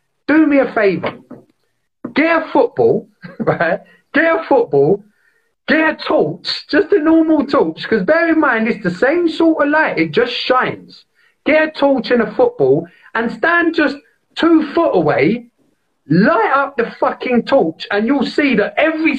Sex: male